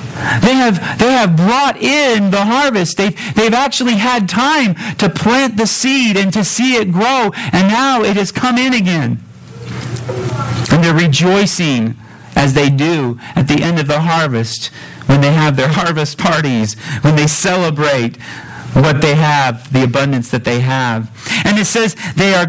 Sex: male